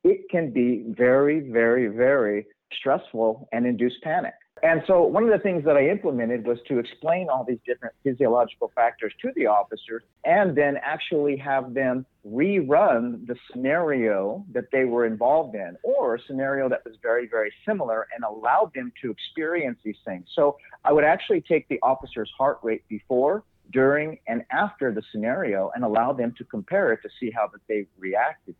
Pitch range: 115-155 Hz